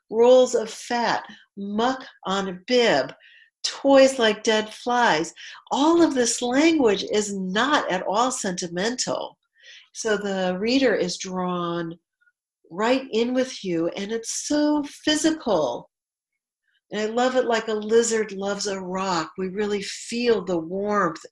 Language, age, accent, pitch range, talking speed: English, 50-69, American, 185-260 Hz, 135 wpm